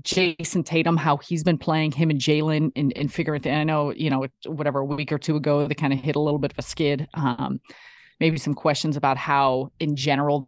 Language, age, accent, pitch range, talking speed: English, 30-49, American, 140-160 Hz, 230 wpm